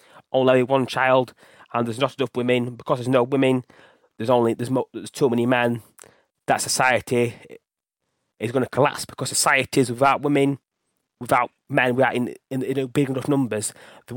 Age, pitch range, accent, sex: 20-39, 125-145 Hz, British, male